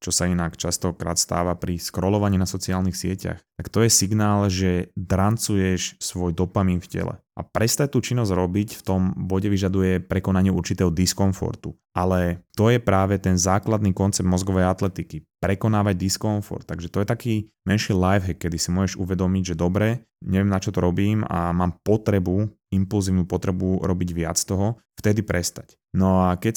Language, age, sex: Slovak, 20-39, male